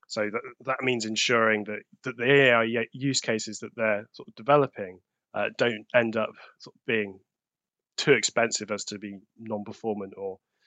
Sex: male